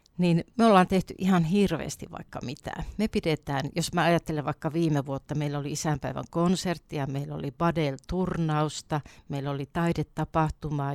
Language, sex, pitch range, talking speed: Finnish, female, 145-170 Hz, 145 wpm